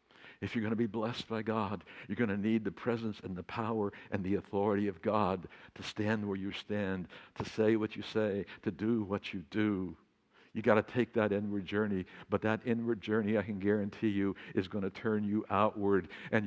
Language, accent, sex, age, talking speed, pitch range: English, American, male, 60-79, 215 wpm, 100-155 Hz